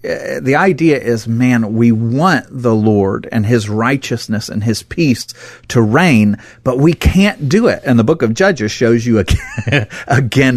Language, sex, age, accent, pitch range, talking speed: English, male, 40-59, American, 105-130 Hz, 170 wpm